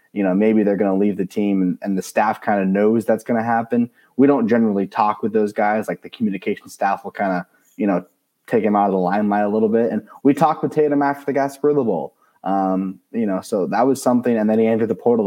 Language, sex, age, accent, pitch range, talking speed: English, male, 20-39, American, 100-120 Hz, 270 wpm